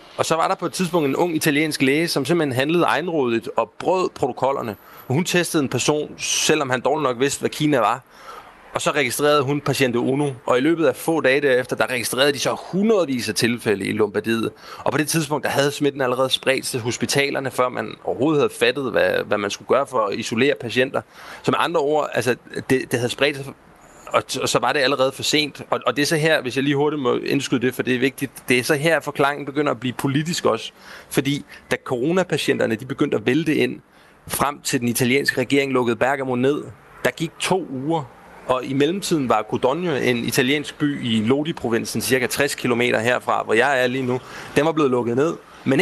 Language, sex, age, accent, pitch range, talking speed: Danish, male, 30-49, native, 125-155 Hz, 220 wpm